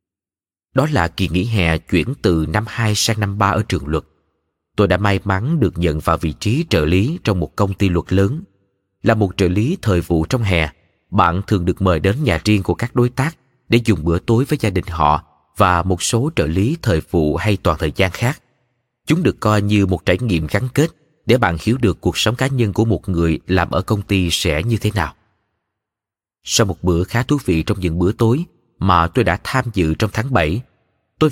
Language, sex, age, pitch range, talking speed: Vietnamese, male, 20-39, 85-115 Hz, 225 wpm